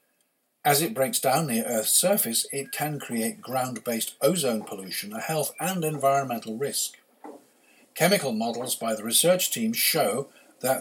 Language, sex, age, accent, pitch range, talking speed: English, male, 60-79, British, 120-175 Hz, 145 wpm